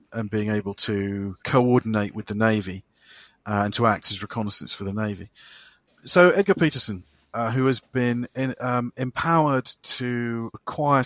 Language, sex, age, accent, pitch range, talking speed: English, male, 40-59, British, 105-120 Hz, 155 wpm